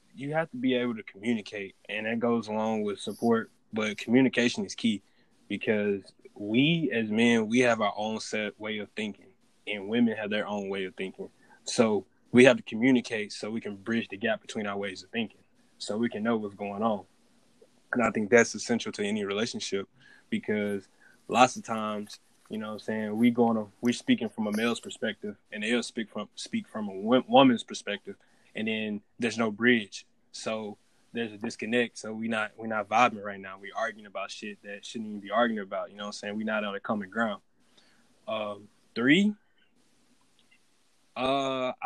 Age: 10-29